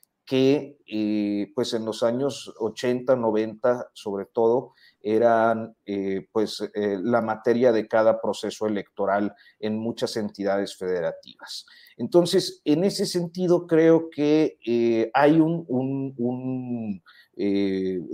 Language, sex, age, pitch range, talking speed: Spanish, male, 40-59, 110-145 Hz, 120 wpm